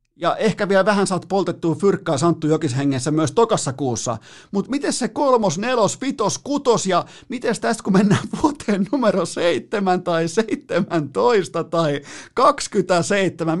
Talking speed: 140 wpm